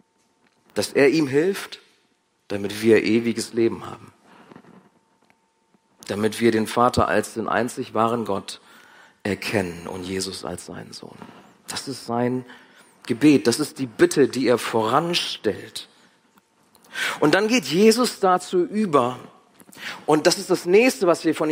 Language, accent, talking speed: German, German, 135 wpm